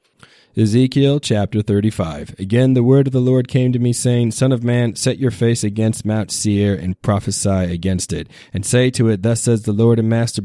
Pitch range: 95-110 Hz